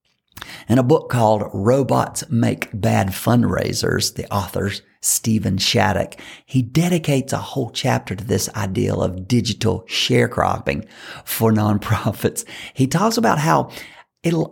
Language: English